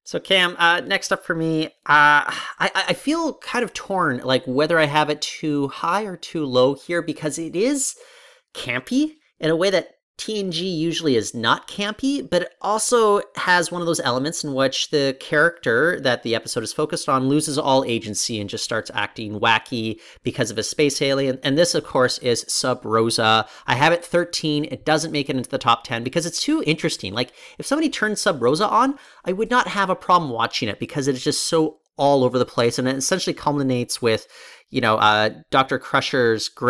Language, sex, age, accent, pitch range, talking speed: English, male, 30-49, American, 120-170 Hz, 205 wpm